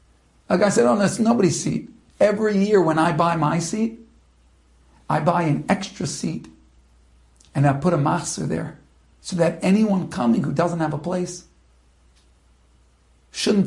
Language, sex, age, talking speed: English, male, 60-79, 155 wpm